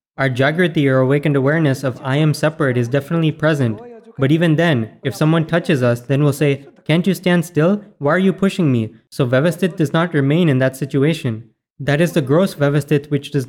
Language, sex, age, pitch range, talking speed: Gujarati, male, 20-39, 140-170 Hz, 205 wpm